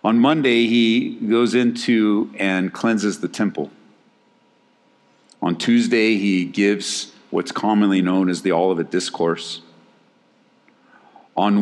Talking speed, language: 110 wpm, English